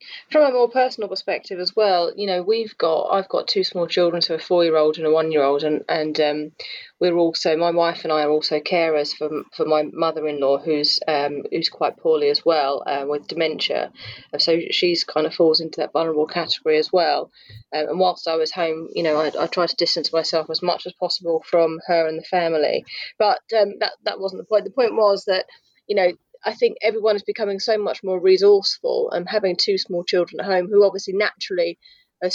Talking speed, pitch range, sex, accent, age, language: 225 wpm, 160-200 Hz, female, British, 30-49, English